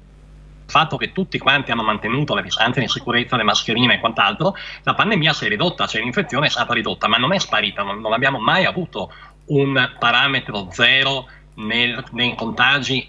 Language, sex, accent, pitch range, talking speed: Italian, male, native, 120-155 Hz, 180 wpm